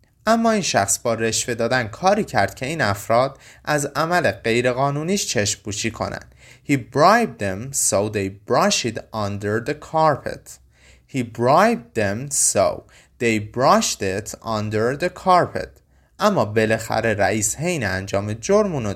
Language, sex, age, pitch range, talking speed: Persian, male, 30-49, 100-150 Hz, 135 wpm